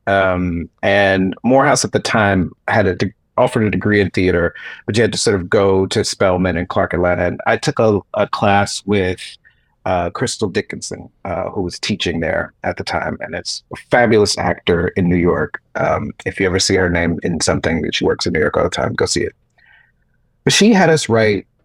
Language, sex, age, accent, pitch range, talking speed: English, male, 40-59, American, 95-120 Hz, 215 wpm